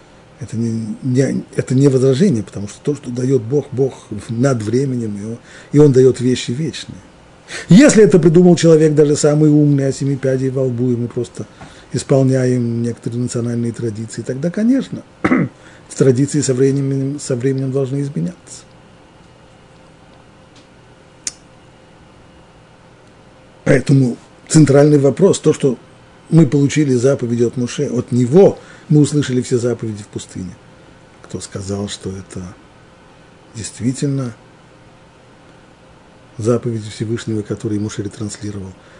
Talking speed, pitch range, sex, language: 115 wpm, 115-145 Hz, male, Russian